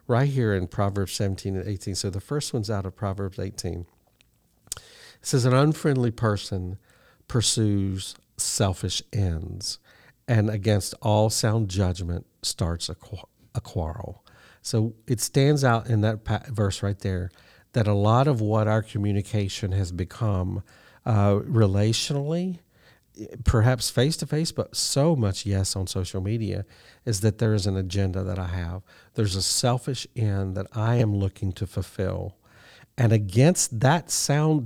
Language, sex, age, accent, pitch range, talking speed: English, male, 50-69, American, 95-120 Hz, 145 wpm